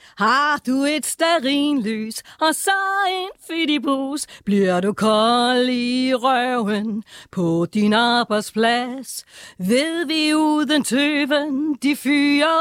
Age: 40-59